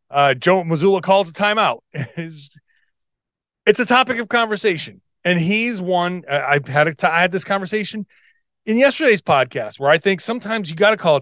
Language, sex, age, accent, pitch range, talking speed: English, male, 30-49, American, 150-215 Hz, 185 wpm